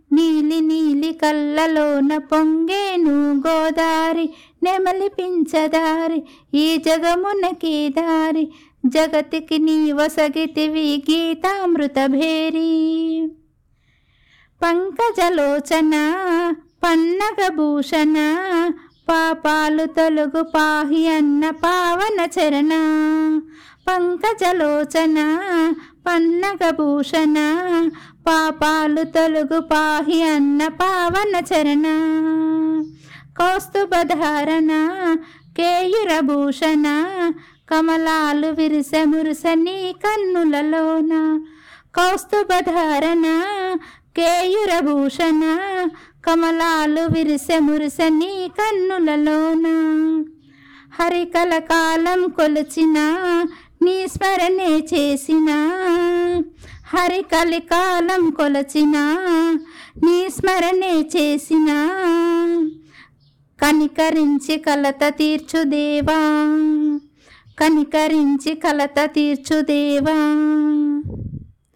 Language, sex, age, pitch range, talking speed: Telugu, female, 60-79, 305-340 Hz, 50 wpm